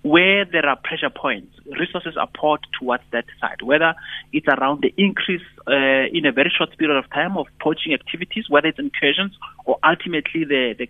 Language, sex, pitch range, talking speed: English, male, 135-190 Hz, 185 wpm